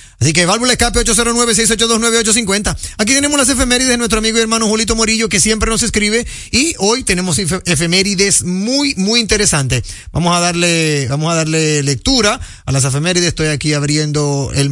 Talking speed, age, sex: 160 wpm, 40-59, male